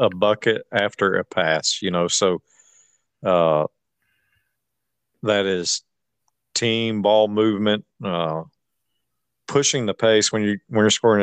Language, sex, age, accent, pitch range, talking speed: English, male, 50-69, American, 95-115 Hz, 120 wpm